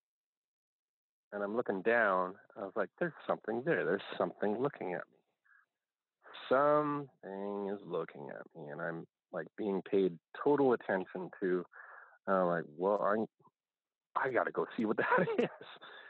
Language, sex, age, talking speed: English, male, 40-59, 150 wpm